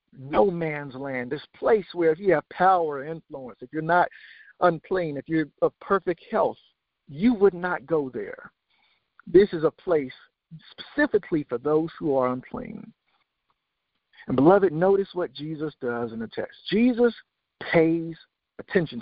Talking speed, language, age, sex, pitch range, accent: 150 wpm, English, 50-69, male, 140-195 Hz, American